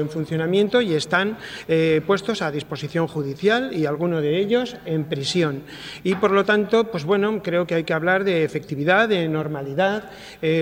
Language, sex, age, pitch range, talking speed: Spanish, male, 40-59, 155-185 Hz, 175 wpm